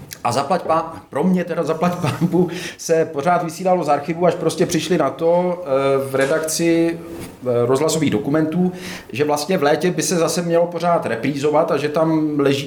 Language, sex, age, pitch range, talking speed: Czech, male, 40-59, 145-180 Hz, 165 wpm